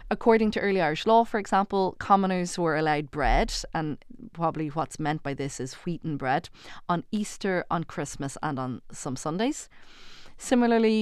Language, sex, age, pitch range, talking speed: English, female, 30-49, 150-195 Hz, 165 wpm